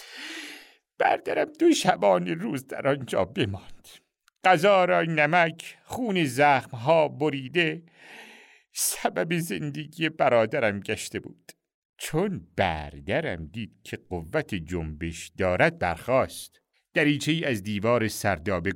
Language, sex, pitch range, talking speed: Persian, male, 105-155 Hz, 95 wpm